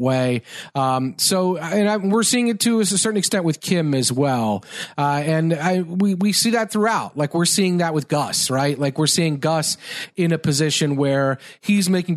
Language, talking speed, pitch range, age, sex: English, 190 wpm, 135-180 Hz, 40-59, male